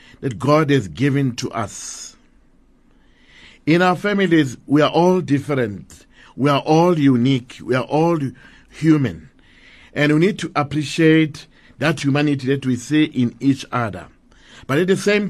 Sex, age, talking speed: male, 50-69, 150 wpm